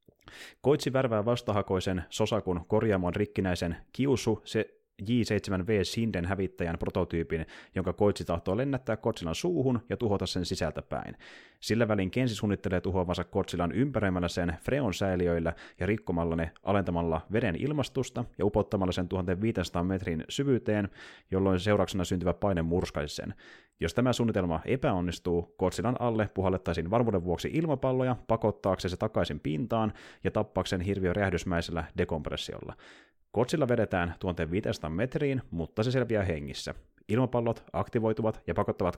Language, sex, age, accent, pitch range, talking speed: Finnish, male, 30-49, native, 85-110 Hz, 125 wpm